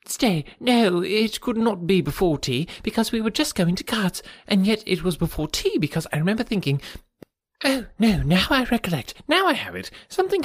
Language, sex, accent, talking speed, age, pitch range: English, male, British, 200 wpm, 30-49, 145-220 Hz